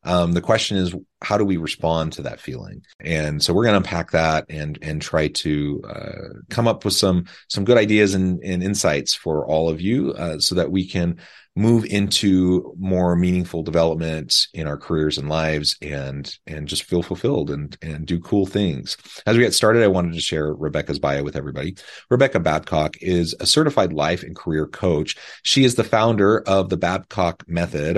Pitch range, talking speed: 80-100 Hz, 195 wpm